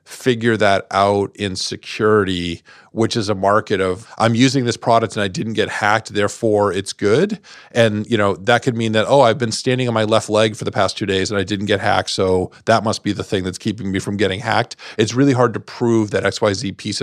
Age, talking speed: 40-59, 235 wpm